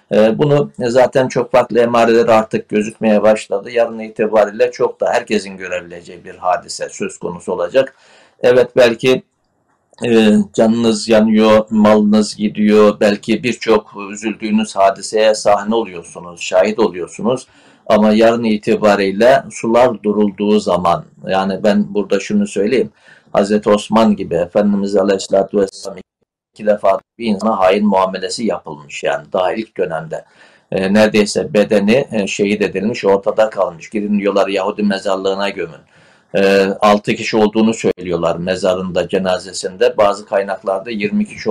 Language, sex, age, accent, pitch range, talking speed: Turkish, male, 60-79, native, 100-115 Hz, 125 wpm